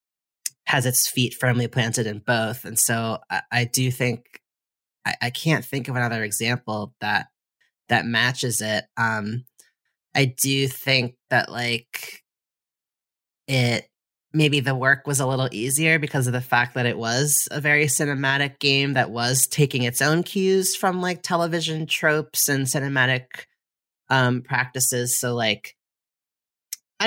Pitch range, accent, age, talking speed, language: 120-150 Hz, American, 30-49, 145 wpm, English